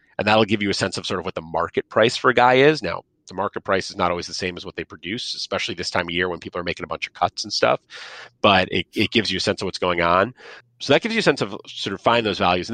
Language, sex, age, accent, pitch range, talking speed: English, male, 30-49, American, 90-115 Hz, 325 wpm